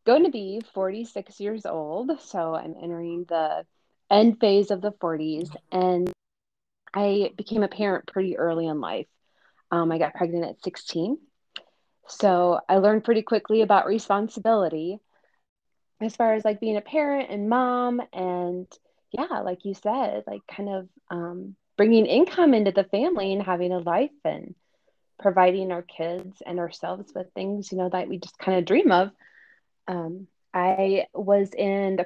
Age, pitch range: 20-39, 175-210 Hz